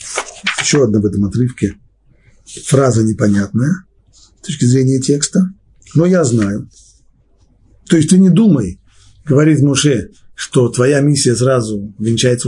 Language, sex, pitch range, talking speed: Russian, male, 125-180 Hz, 125 wpm